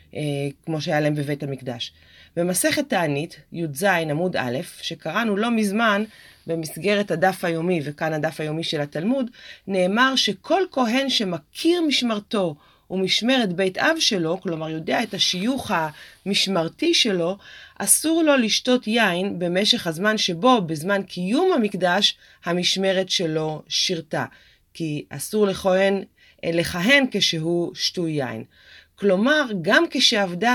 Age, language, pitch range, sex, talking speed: 30-49, Hebrew, 165-220 Hz, female, 115 wpm